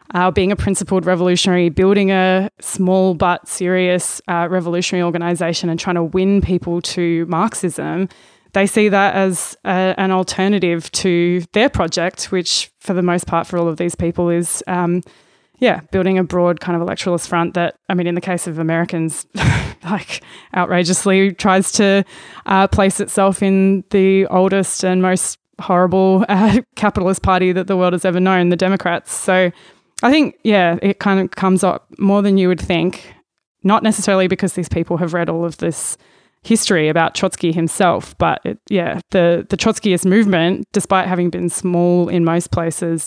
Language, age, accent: English, 20-39, Australian